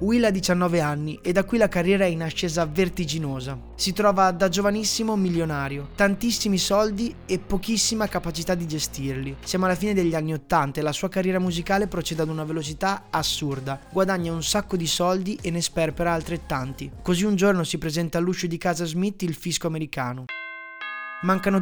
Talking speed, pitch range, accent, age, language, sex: 175 wpm, 155-190 Hz, native, 20-39, Italian, male